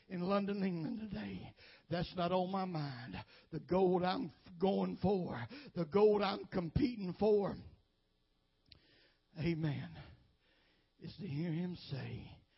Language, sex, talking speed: English, male, 120 wpm